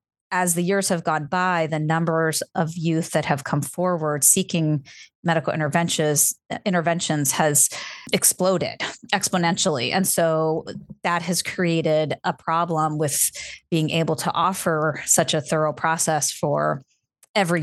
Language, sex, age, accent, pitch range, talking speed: English, female, 30-49, American, 155-185 Hz, 135 wpm